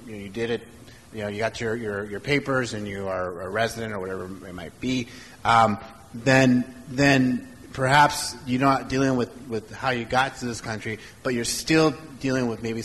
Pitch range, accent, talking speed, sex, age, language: 100-130 Hz, American, 205 wpm, male, 30-49, English